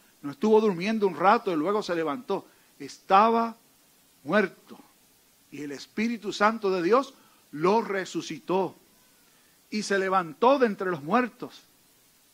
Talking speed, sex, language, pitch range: 120 wpm, male, Spanish, 205-270 Hz